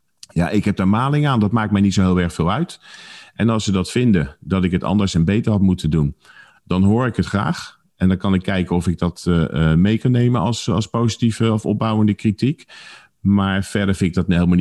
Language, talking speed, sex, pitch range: Dutch, 235 wpm, male, 85-105 Hz